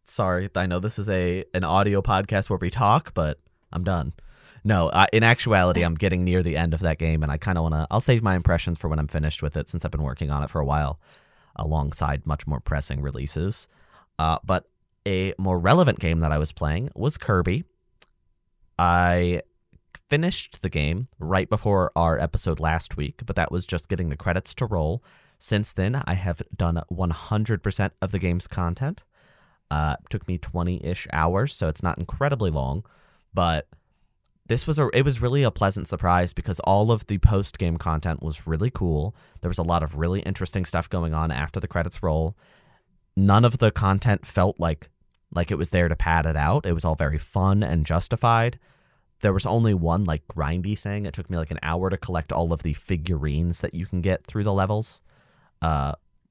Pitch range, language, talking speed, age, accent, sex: 80-100 Hz, English, 200 wpm, 30-49, American, male